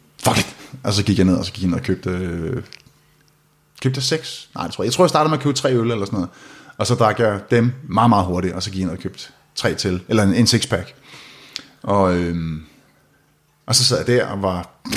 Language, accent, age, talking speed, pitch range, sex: English, Danish, 30-49, 240 wpm, 95-130 Hz, male